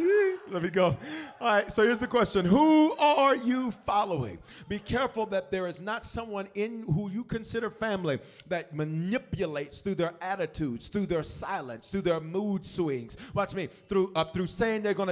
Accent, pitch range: American, 170-220 Hz